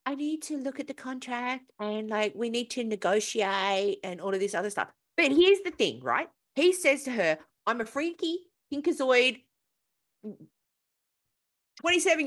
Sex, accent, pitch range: female, Australian, 215-310 Hz